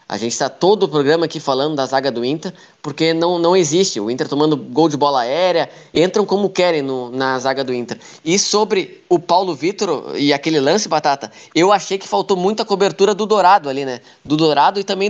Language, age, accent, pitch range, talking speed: Portuguese, 20-39, Brazilian, 140-175 Hz, 215 wpm